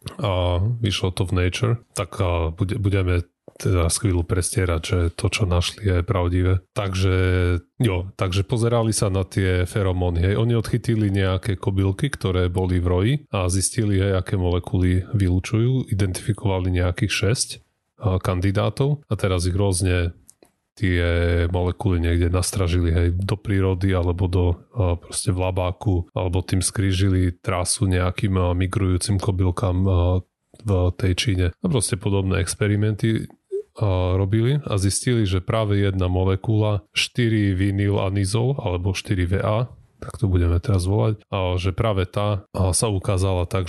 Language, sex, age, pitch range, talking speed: Slovak, male, 30-49, 90-105 Hz, 140 wpm